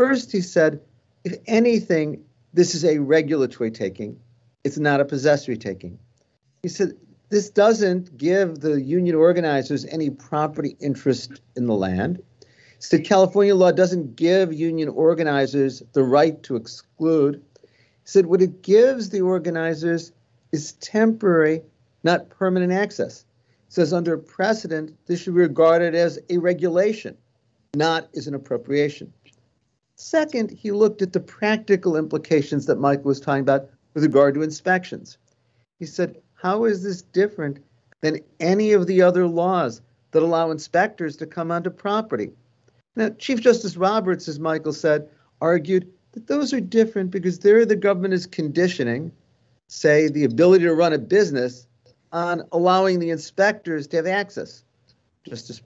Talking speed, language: 145 wpm, English